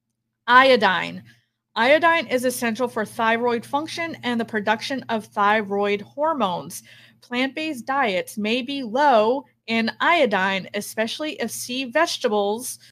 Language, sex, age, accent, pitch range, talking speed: English, female, 30-49, American, 215-275 Hz, 110 wpm